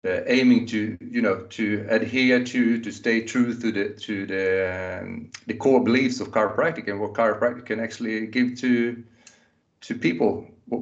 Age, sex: 40-59, male